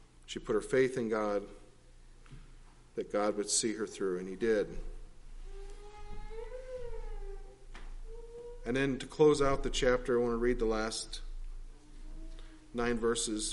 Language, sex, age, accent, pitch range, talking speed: English, male, 40-59, American, 110-150 Hz, 135 wpm